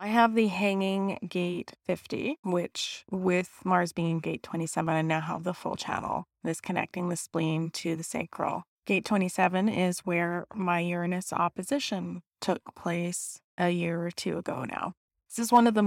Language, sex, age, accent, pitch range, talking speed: English, female, 20-39, American, 165-190 Hz, 170 wpm